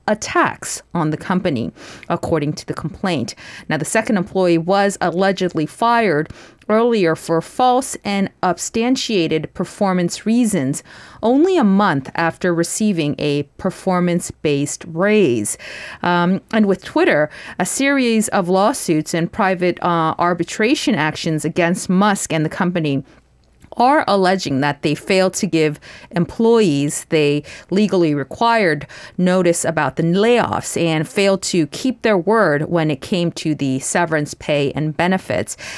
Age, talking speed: 40-59, 130 wpm